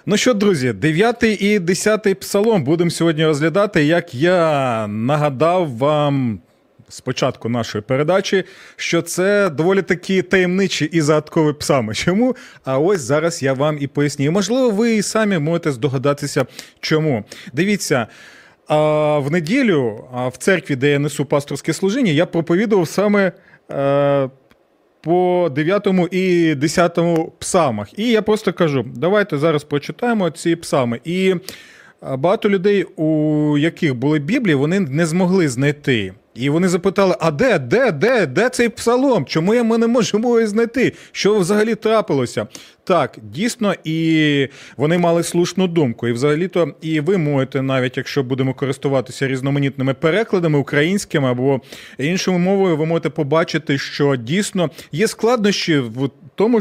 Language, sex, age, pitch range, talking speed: Ukrainian, male, 30-49, 140-190 Hz, 135 wpm